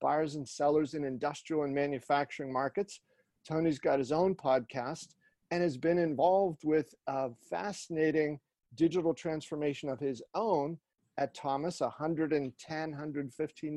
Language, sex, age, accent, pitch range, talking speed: English, male, 40-59, American, 140-170 Hz, 125 wpm